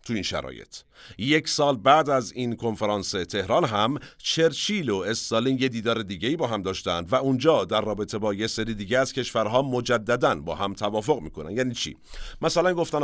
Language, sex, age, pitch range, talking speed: Persian, male, 50-69, 95-145 Hz, 175 wpm